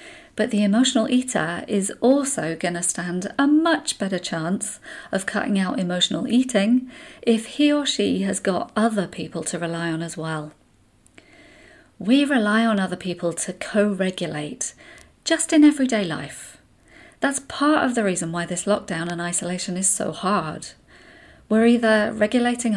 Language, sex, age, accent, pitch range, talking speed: English, female, 40-59, British, 185-245 Hz, 155 wpm